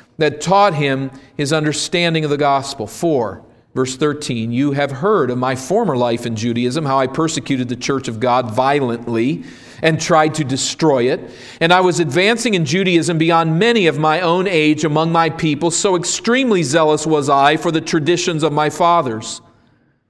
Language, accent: English, American